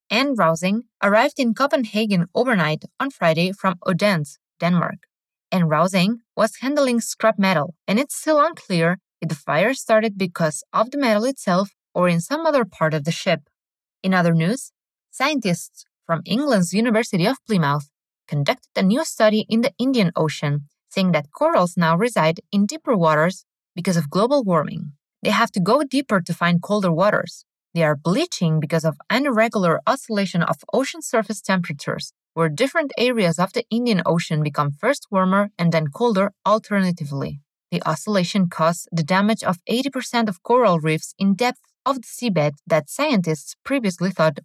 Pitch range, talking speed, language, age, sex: 165-235 Hz, 160 wpm, English, 20-39, female